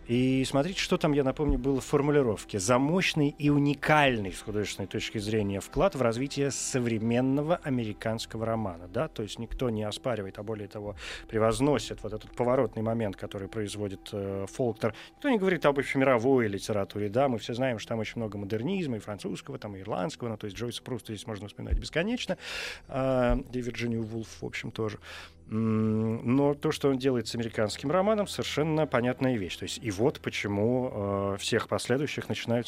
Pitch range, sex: 105-135 Hz, male